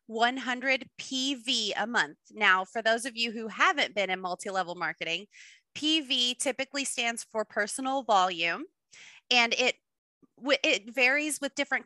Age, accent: 20-39, American